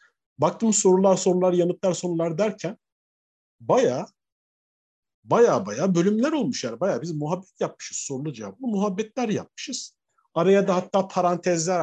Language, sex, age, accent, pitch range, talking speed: Turkish, male, 50-69, native, 125-180 Hz, 120 wpm